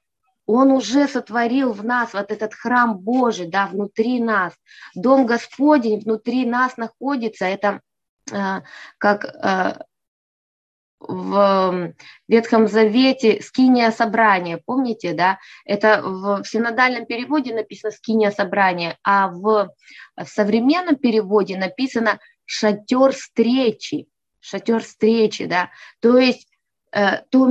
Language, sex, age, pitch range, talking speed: Russian, female, 20-39, 205-255 Hz, 105 wpm